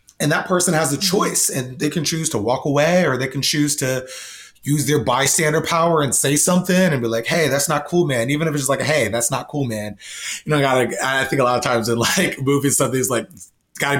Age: 30-49